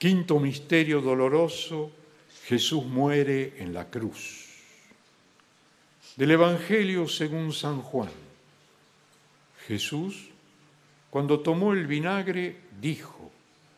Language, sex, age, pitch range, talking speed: Spanish, male, 60-79, 115-155 Hz, 85 wpm